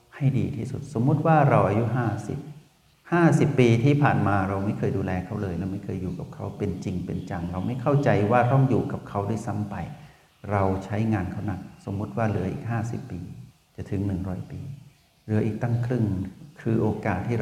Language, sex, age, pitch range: Thai, male, 60-79, 105-135 Hz